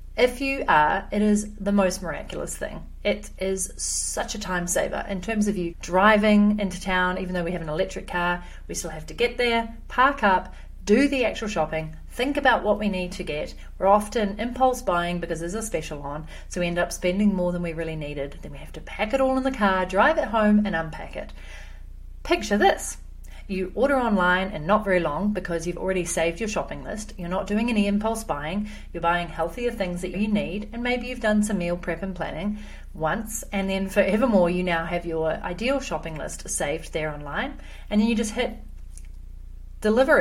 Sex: female